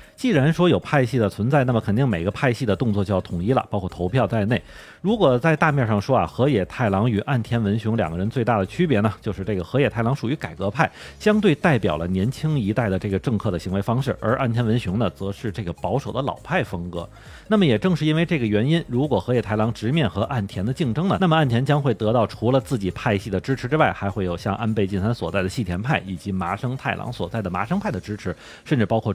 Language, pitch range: Chinese, 100-135 Hz